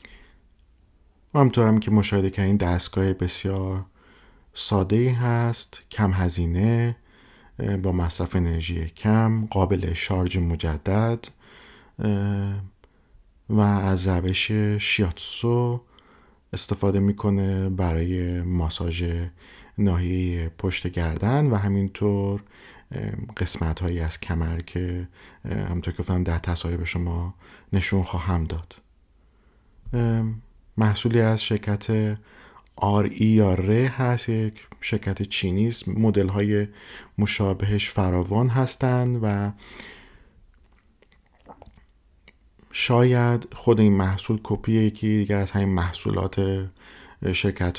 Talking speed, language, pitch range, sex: 95 wpm, Persian, 90-105 Hz, male